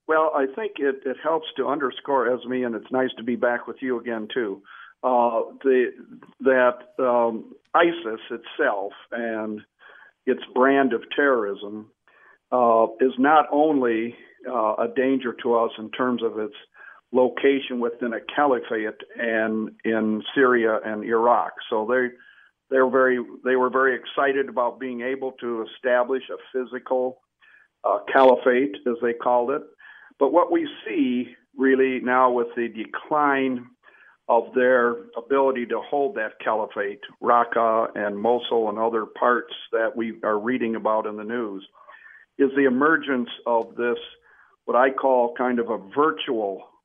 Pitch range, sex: 115-135 Hz, male